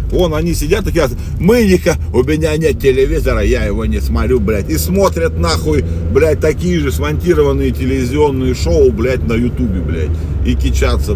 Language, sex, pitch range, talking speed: Russian, male, 85-105 Hz, 160 wpm